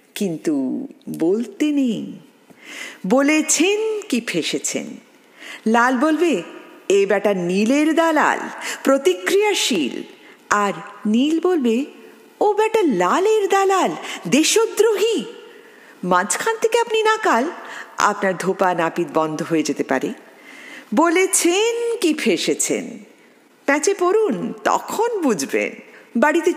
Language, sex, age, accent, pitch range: Bengali, female, 50-69, native, 225-365 Hz